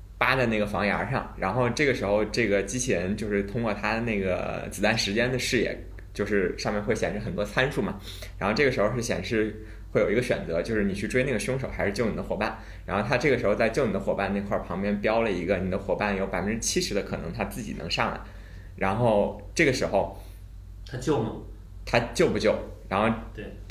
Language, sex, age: Chinese, male, 20-39